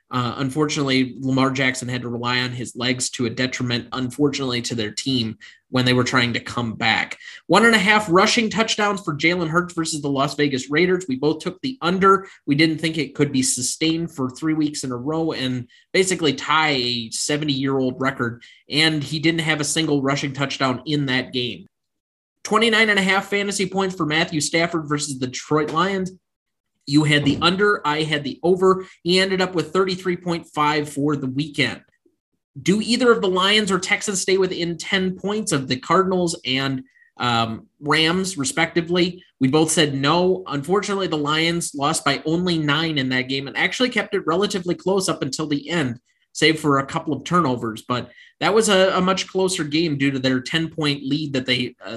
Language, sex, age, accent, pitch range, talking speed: English, male, 20-39, American, 130-180 Hz, 195 wpm